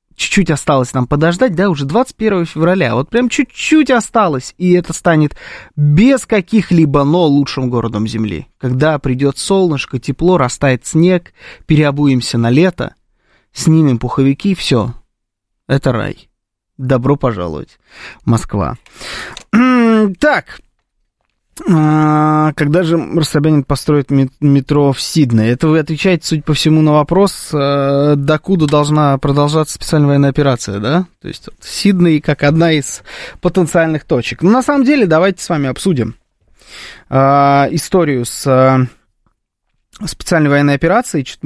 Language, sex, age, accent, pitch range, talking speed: Russian, male, 20-39, native, 135-175 Hz, 120 wpm